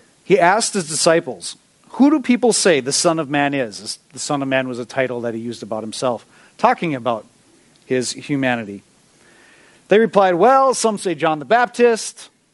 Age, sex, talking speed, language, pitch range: 40-59, male, 175 wpm, English, 145-215 Hz